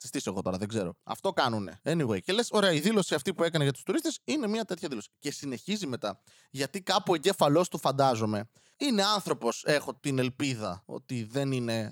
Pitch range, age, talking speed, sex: 125-195 Hz, 20-39, 200 wpm, male